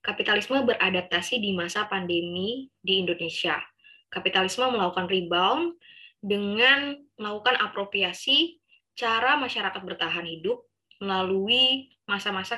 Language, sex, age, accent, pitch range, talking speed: Indonesian, female, 20-39, native, 180-245 Hz, 90 wpm